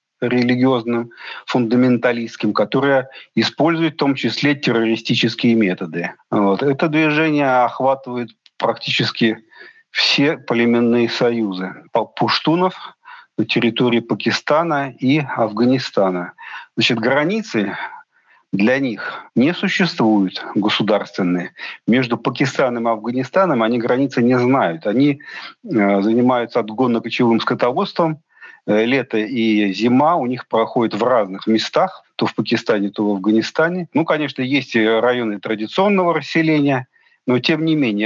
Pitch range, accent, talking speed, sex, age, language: 110-140 Hz, native, 105 wpm, male, 40-59, Russian